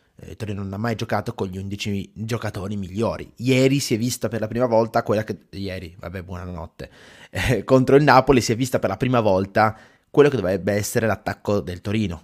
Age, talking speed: 20-39, 200 wpm